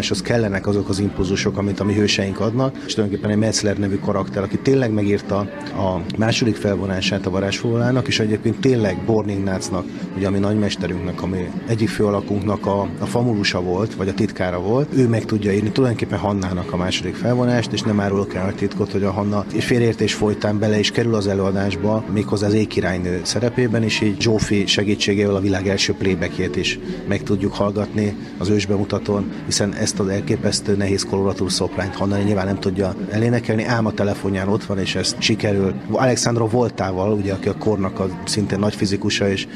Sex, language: male, Hungarian